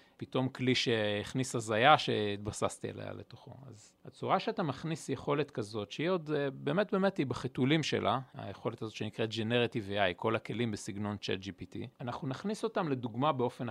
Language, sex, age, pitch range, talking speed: Hebrew, male, 40-59, 120-170 Hz, 150 wpm